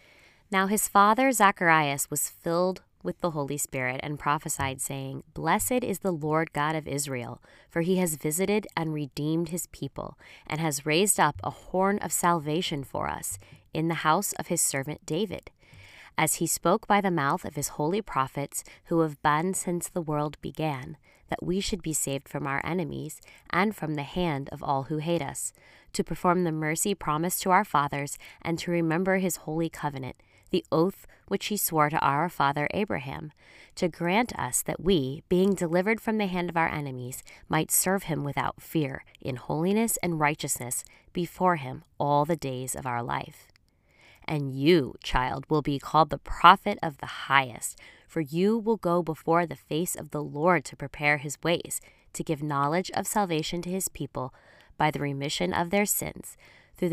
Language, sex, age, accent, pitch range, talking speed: English, female, 20-39, American, 145-180 Hz, 180 wpm